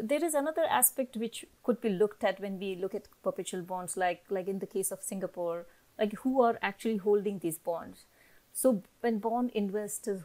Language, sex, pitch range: English, female, 180-220 Hz